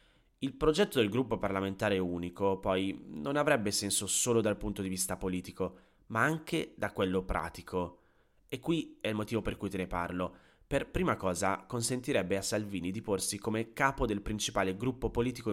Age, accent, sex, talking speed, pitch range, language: 30-49, native, male, 175 wpm, 95-120 Hz, Italian